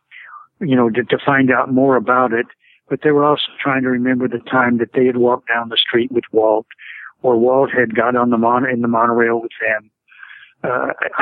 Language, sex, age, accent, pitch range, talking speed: English, male, 60-79, American, 120-135 Hz, 215 wpm